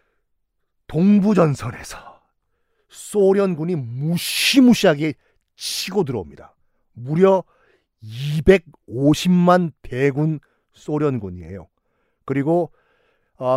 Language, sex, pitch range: Korean, male, 120-180 Hz